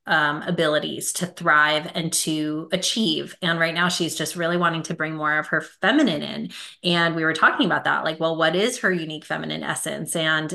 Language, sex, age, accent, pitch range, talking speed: English, female, 20-39, American, 155-185 Hz, 205 wpm